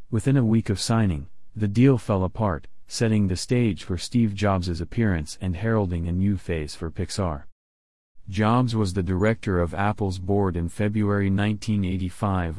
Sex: male